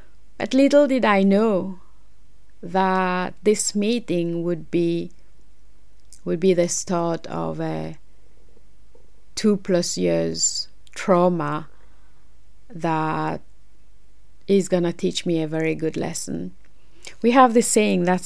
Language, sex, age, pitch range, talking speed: English, female, 30-49, 170-185 Hz, 110 wpm